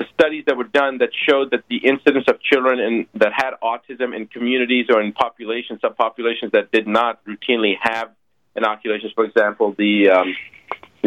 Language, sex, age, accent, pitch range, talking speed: English, male, 40-59, American, 110-150 Hz, 170 wpm